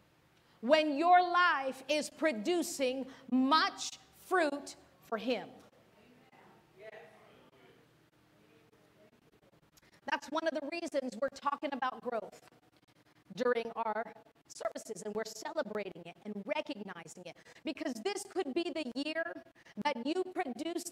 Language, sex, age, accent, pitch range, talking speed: English, female, 40-59, American, 230-315 Hz, 105 wpm